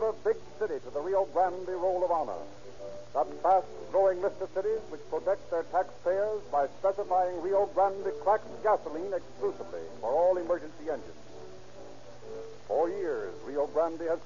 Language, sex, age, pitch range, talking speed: English, male, 60-79, 145-195 Hz, 145 wpm